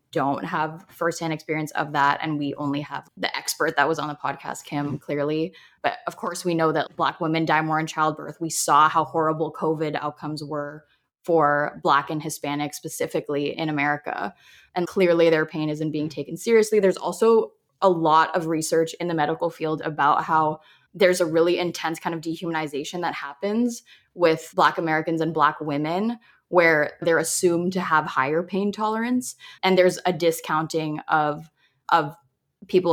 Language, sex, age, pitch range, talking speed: English, female, 20-39, 155-180 Hz, 175 wpm